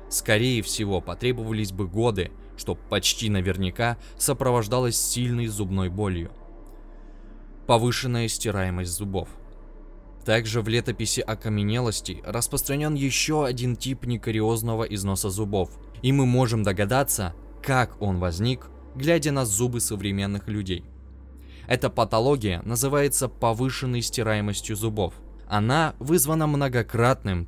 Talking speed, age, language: 105 wpm, 20-39, Russian